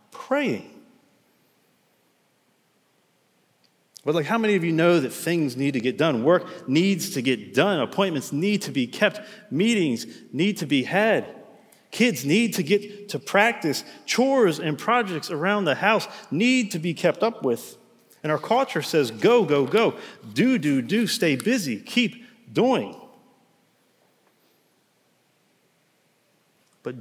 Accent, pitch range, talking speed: American, 155-215 Hz, 140 wpm